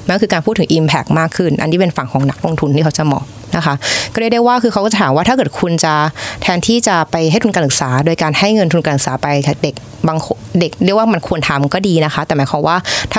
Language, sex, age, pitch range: Thai, female, 20-39, 145-190 Hz